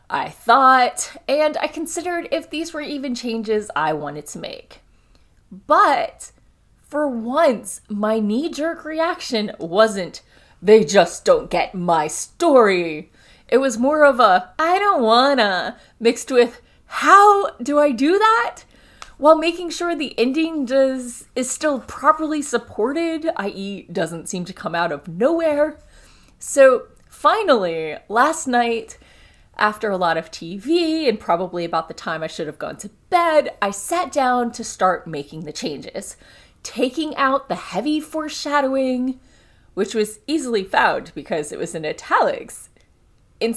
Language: English